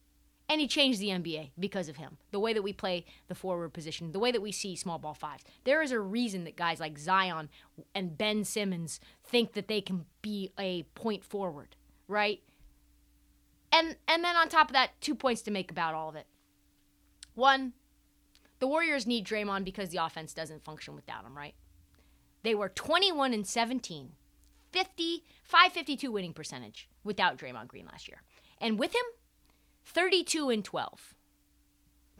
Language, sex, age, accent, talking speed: English, female, 30-49, American, 160 wpm